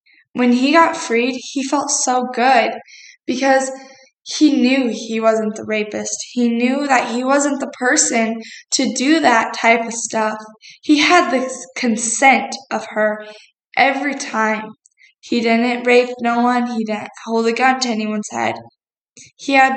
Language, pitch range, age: English, 220-260 Hz, 10-29